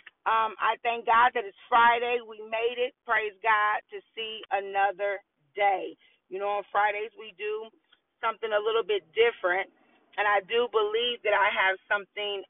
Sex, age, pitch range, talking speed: female, 40-59, 200-285 Hz, 170 wpm